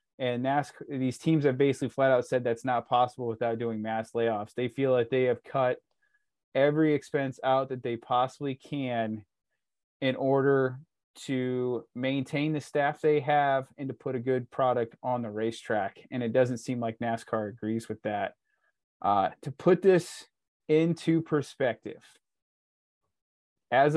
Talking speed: 155 wpm